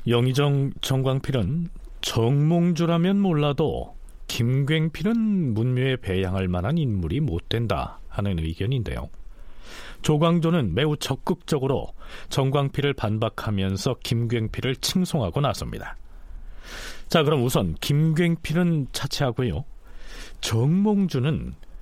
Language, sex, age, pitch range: Korean, male, 40-59, 105-155 Hz